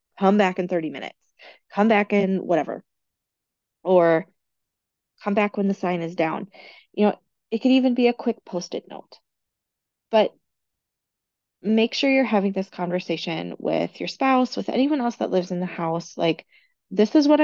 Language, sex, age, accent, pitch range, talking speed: English, female, 30-49, American, 175-225 Hz, 170 wpm